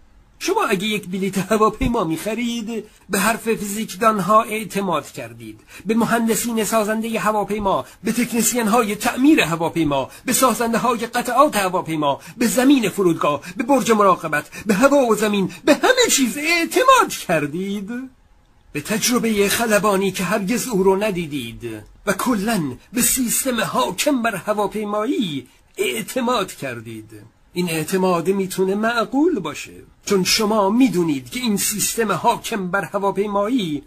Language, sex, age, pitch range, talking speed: Persian, male, 50-69, 175-225 Hz, 125 wpm